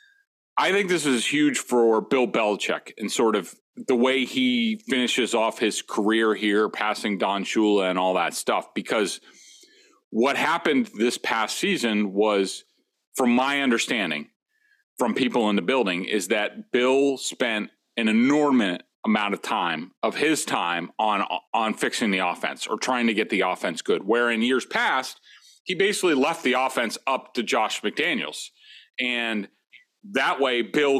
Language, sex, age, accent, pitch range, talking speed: English, male, 40-59, American, 115-155 Hz, 160 wpm